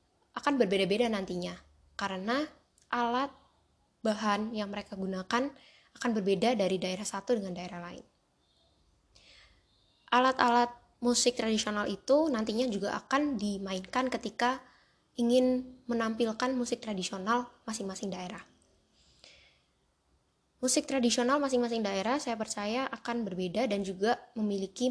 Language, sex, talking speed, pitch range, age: Indonesian, female, 105 wpm, 195-250 Hz, 10-29